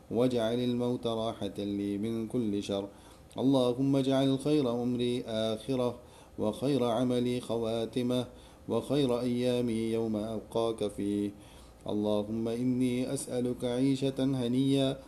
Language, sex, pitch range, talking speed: English, male, 110-130 Hz, 100 wpm